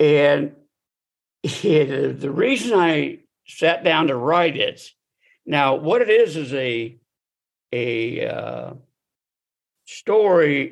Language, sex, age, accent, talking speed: English, male, 60-79, American, 110 wpm